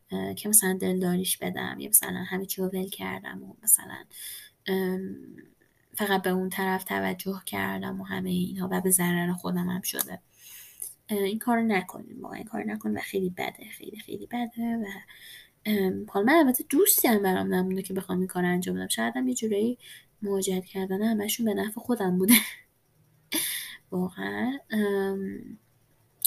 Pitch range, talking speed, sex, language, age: 185-230 Hz, 140 wpm, female, Persian, 10-29